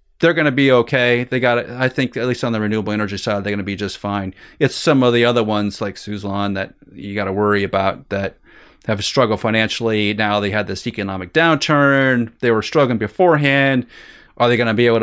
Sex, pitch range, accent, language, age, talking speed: male, 105-125 Hz, American, English, 30-49, 230 wpm